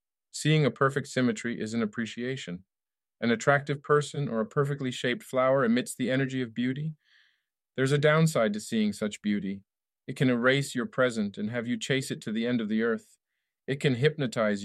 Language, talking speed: English, 190 wpm